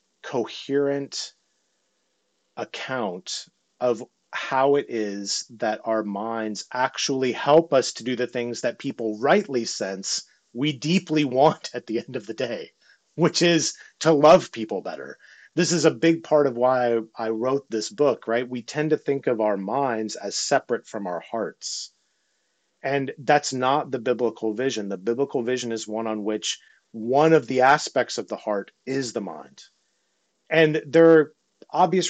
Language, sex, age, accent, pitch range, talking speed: English, male, 30-49, American, 120-160 Hz, 160 wpm